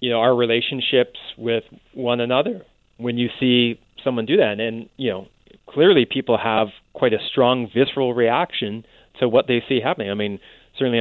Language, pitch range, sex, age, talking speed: English, 110-130 Hz, male, 30-49, 180 wpm